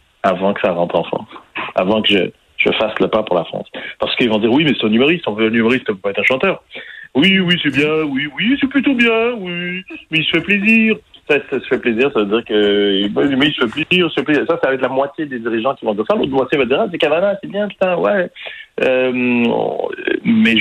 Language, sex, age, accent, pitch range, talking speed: French, male, 40-59, French, 110-175 Hz, 270 wpm